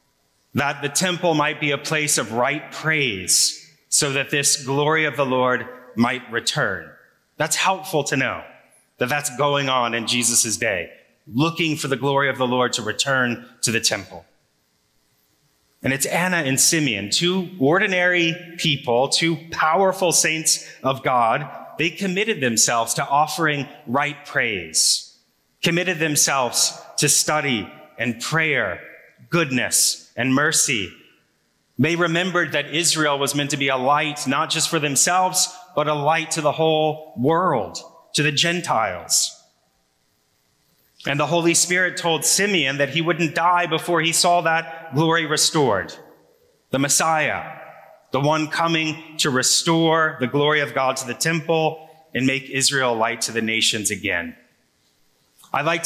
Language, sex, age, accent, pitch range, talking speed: English, male, 30-49, American, 125-165 Hz, 145 wpm